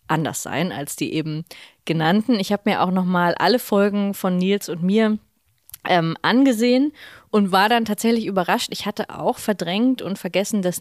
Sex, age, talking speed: female, 30-49, 170 wpm